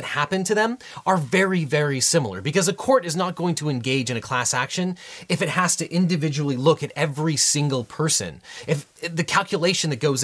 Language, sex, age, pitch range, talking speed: English, male, 30-49, 135-190 Hz, 200 wpm